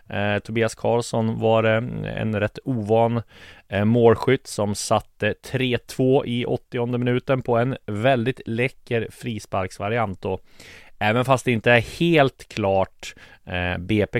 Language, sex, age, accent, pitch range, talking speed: Swedish, male, 30-49, native, 90-110 Hz, 115 wpm